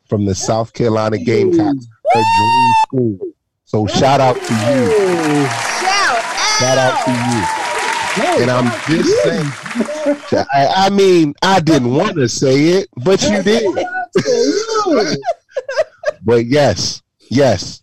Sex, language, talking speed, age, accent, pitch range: male, English, 115 wpm, 30-49, American, 110-165 Hz